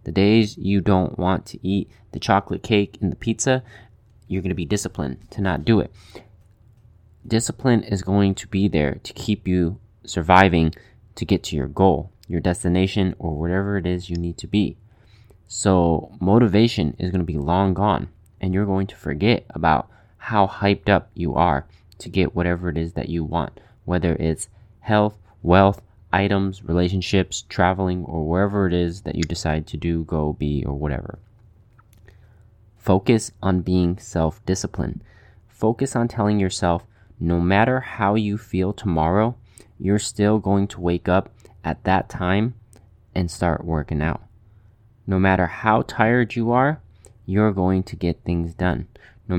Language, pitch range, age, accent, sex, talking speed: English, 90-105 Hz, 20-39, American, male, 165 wpm